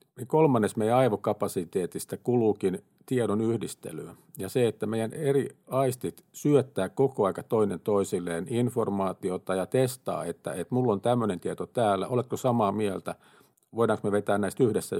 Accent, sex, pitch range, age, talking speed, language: native, male, 100-130 Hz, 50-69, 140 wpm, Finnish